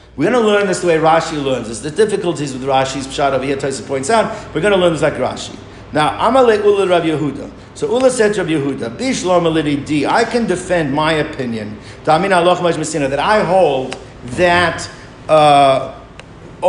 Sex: male